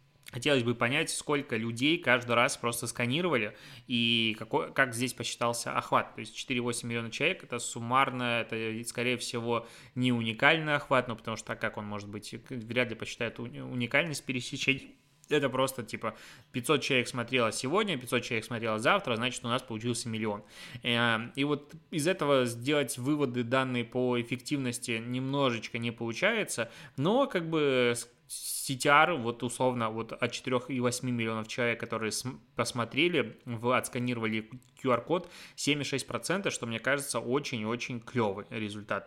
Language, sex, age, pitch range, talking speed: Russian, male, 20-39, 115-135 Hz, 135 wpm